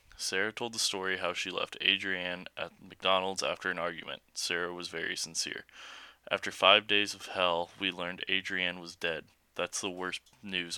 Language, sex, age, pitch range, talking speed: English, male, 20-39, 85-95 Hz, 175 wpm